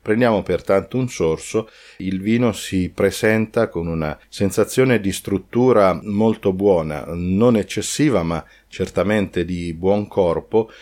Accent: native